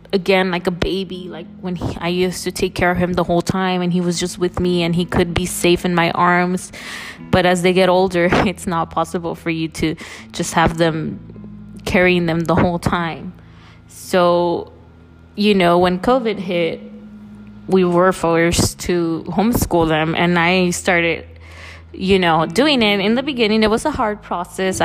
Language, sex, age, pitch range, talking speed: English, female, 20-39, 160-185 Hz, 185 wpm